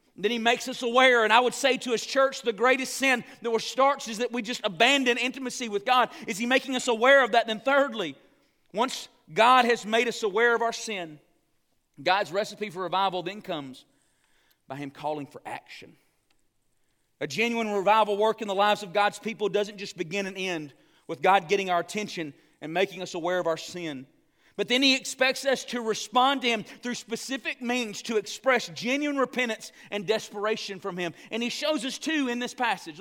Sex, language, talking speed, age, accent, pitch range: male, English, 200 wpm, 40-59, American, 195-260 Hz